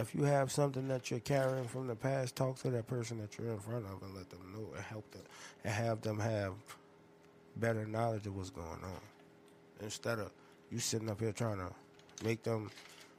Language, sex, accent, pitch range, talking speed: English, male, American, 90-120 Hz, 210 wpm